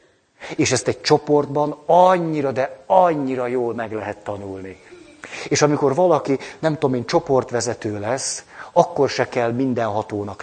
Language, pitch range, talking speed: Hungarian, 115-150 Hz, 140 wpm